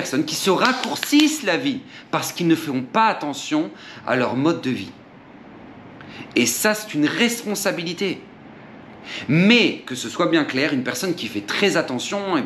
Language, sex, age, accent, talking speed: French, male, 40-59, French, 170 wpm